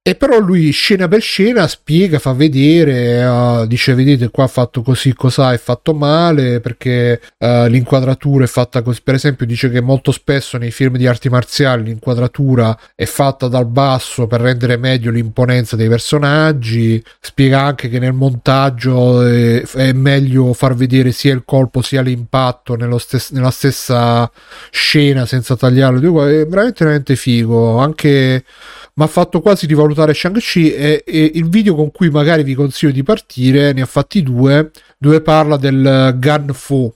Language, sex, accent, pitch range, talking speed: Italian, male, native, 125-150 Hz, 165 wpm